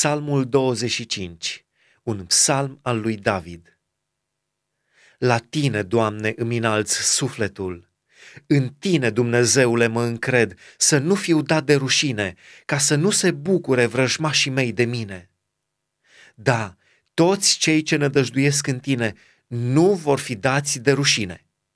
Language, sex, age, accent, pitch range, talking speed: Romanian, male, 30-49, native, 120-155 Hz, 125 wpm